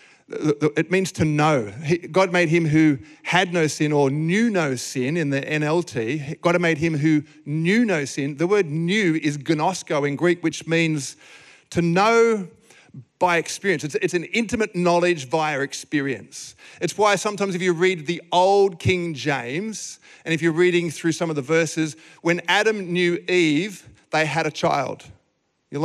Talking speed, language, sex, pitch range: 165 wpm, English, male, 160-190 Hz